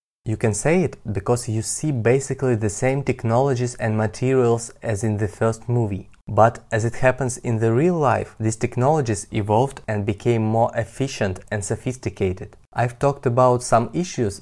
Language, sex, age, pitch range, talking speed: English, male, 20-39, 110-135 Hz, 165 wpm